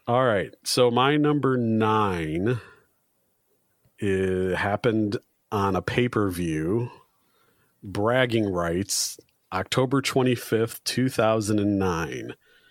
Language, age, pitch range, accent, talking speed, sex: English, 40-59, 100-120 Hz, American, 85 wpm, male